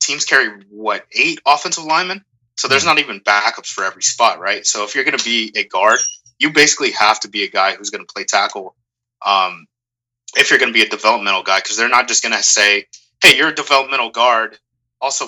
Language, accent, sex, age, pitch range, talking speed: English, American, male, 20-39, 105-120 Hz, 225 wpm